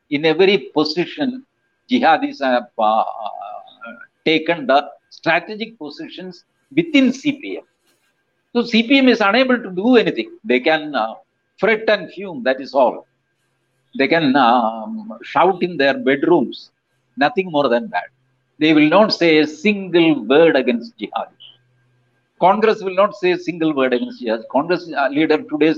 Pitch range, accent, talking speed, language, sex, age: 140-230 Hz, Indian, 140 wpm, English, male, 60-79